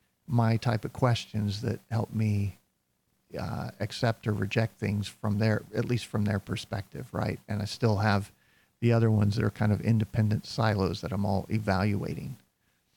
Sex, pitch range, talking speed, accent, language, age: male, 110-125 Hz, 170 wpm, American, English, 50-69